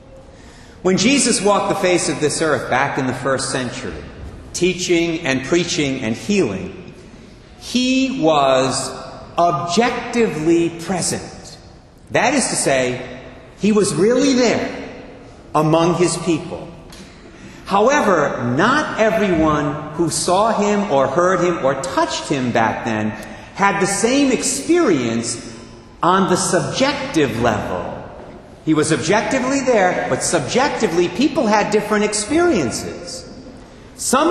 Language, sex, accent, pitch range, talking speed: English, male, American, 145-235 Hz, 115 wpm